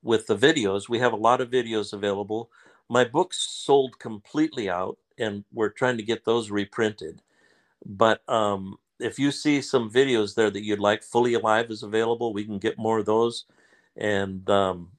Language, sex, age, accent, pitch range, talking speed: English, male, 60-79, American, 105-125 Hz, 180 wpm